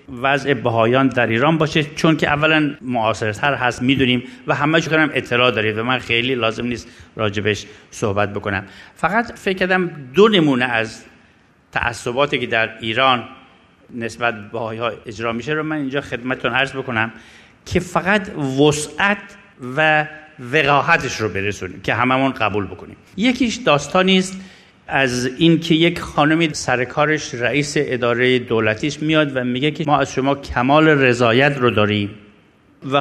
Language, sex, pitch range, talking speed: Persian, male, 115-155 Hz, 140 wpm